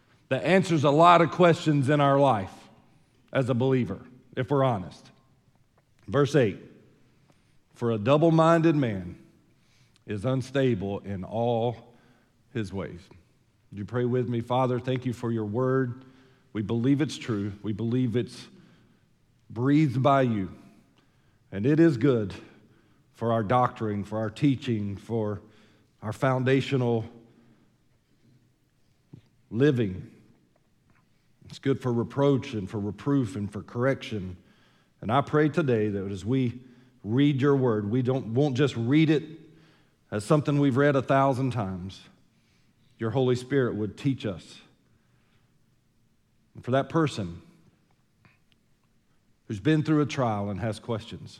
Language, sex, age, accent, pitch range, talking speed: English, male, 50-69, American, 110-140 Hz, 135 wpm